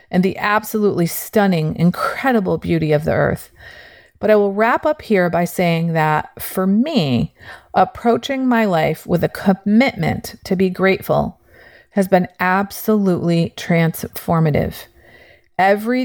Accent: American